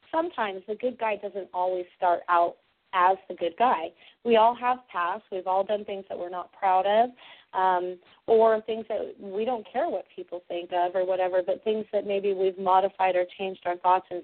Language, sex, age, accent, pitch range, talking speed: English, female, 30-49, American, 185-230 Hz, 205 wpm